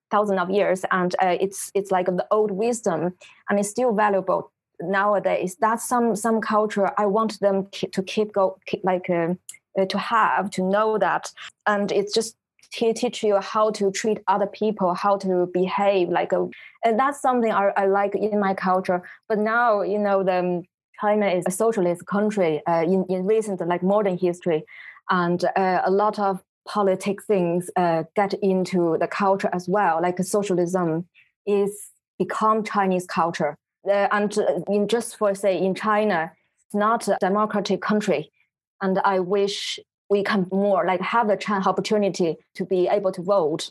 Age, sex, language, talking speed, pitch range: 20-39, female, English, 175 wpm, 185-210 Hz